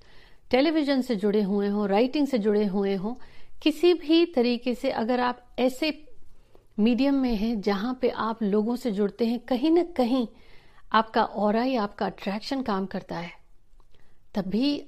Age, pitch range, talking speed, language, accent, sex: 50-69, 205-270 Hz, 155 wpm, Hindi, native, female